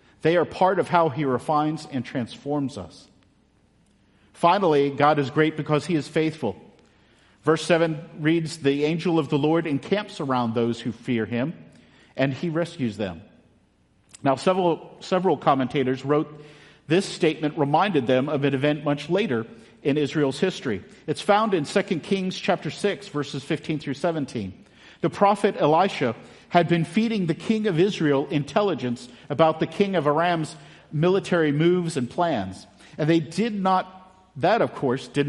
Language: English